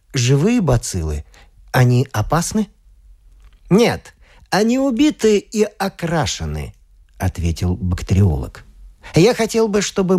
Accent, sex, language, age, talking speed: native, male, Russian, 50-69, 90 wpm